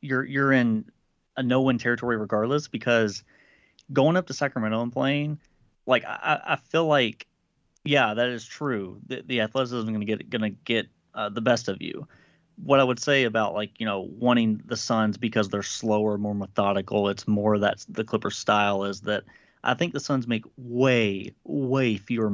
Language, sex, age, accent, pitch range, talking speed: English, male, 30-49, American, 105-125 Hz, 185 wpm